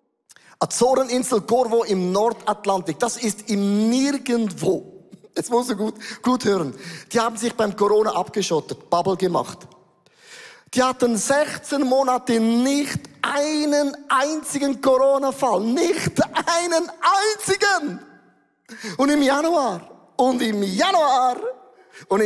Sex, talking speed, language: male, 110 wpm, German